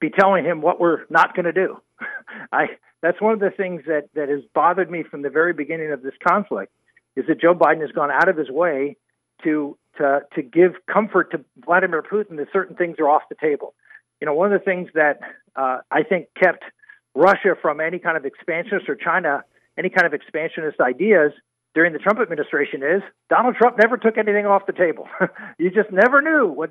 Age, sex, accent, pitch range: 50-69, male, American, 155-210 Hz